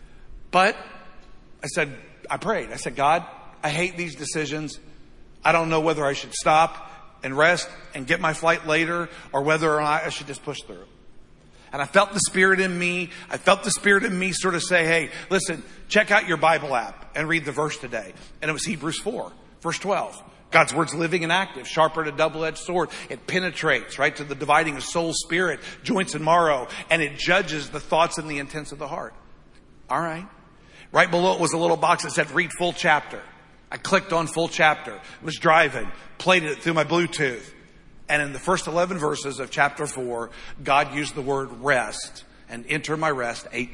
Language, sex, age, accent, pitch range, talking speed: English, male, 50-69, American, 150-175 Hz, 205 wpm